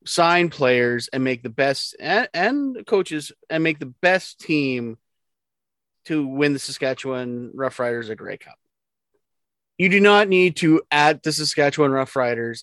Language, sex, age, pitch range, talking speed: English, male, 30-49, 135-185 Hz, 155 wpm